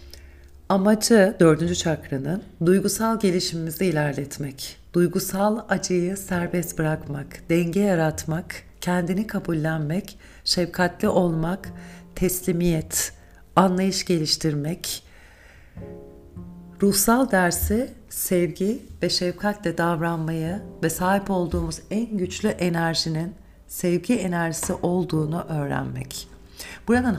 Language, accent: Turkish, native